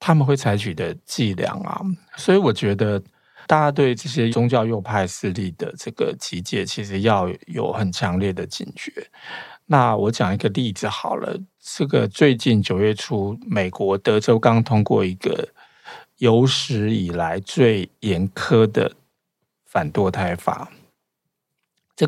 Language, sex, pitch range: Chinese, male, 100-140 Hz